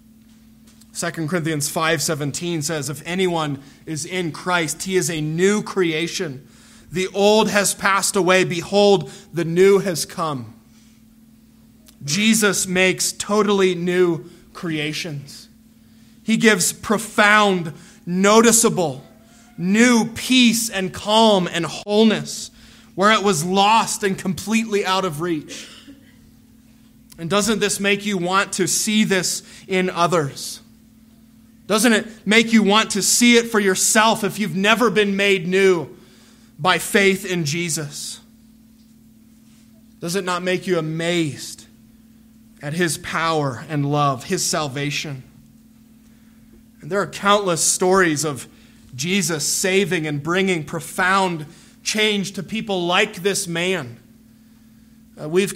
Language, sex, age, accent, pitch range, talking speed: English, male, 20-39, American, 175-225 Hz, 120 wpm